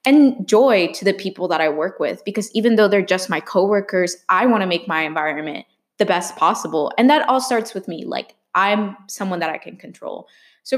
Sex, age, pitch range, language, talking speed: female, 20-39, 180-235 Hz, English, 215 wpm